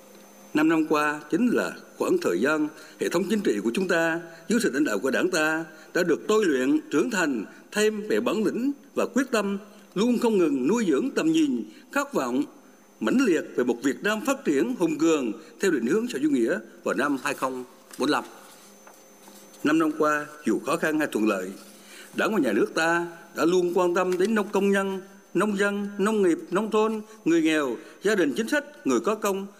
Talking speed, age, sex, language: 205 wpm, 60-79, male, Vietnamese